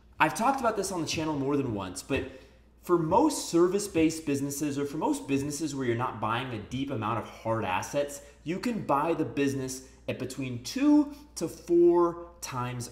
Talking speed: 185 wpm